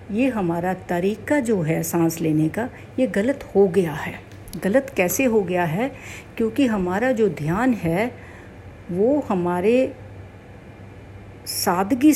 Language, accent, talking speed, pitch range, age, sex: Hindi, native, 130 wpm, 160-230 Hz, 60-79, female